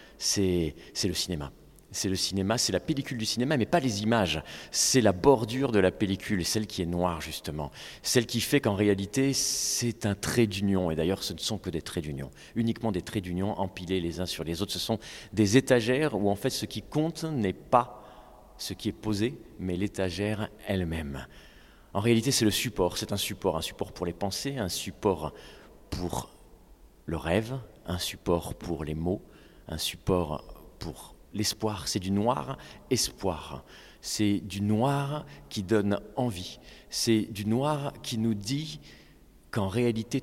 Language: French